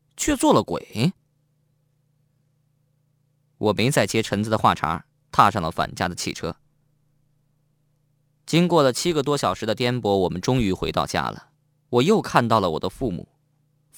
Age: 20-39